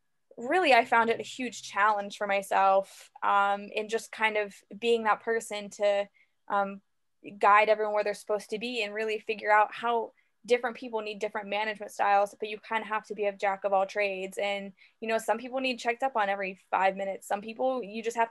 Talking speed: 215 wpm